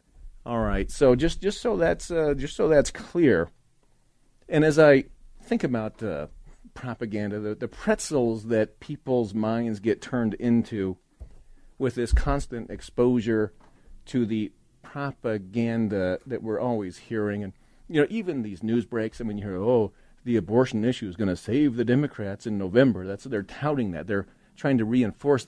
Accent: American